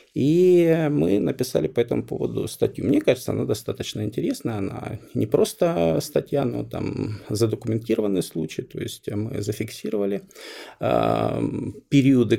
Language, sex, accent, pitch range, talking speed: Russian, male, native, 110-140 Hz, 120 wpm